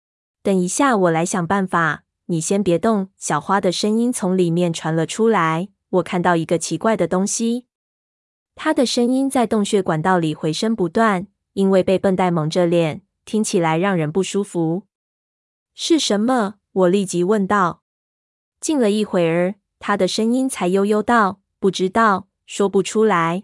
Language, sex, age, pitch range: Chinese, female, 20-39, 175-215 Hz